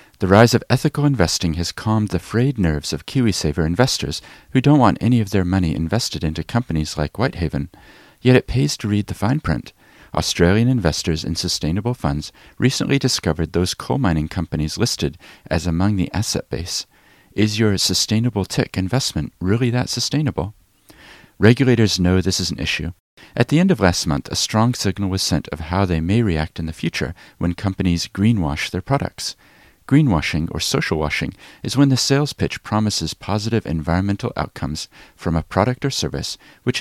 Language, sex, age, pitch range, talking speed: English, male, 40-59, 85-120 Hz, 175 wpm